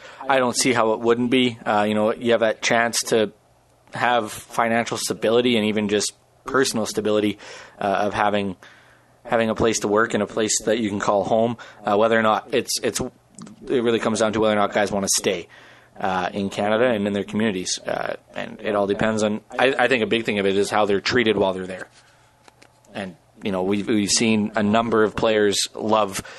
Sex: male